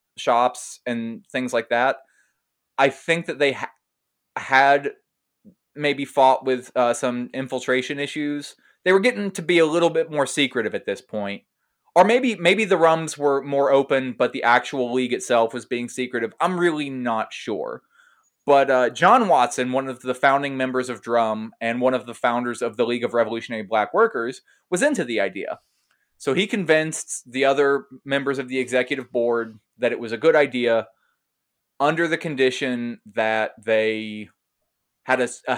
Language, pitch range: English, 120-155 Hz